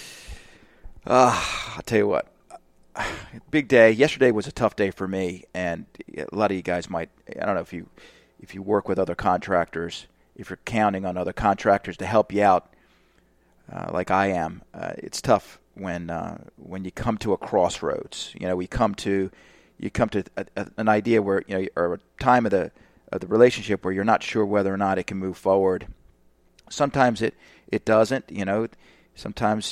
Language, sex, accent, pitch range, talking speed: English, male, American, 95-115 Hz, 200 wpm